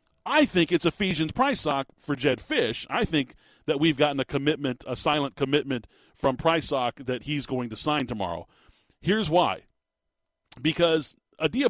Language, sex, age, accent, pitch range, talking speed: English, male, 40-59, American, 125-155 Hz, 165 wpm